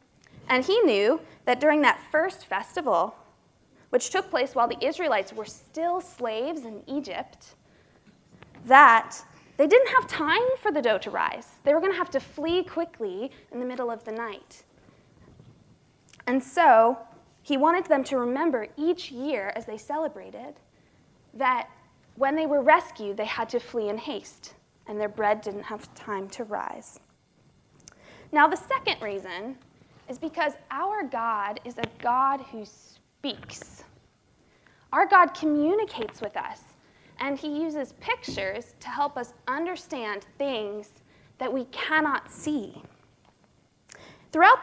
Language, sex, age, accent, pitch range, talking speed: English, female, 20-39, American, 230-325 Hz, 140 wpm